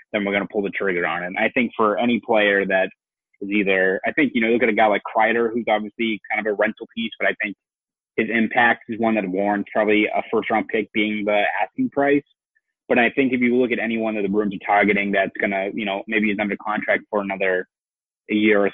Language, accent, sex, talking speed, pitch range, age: English, American, male, 255 wpm, 100-115 Hz, 20-39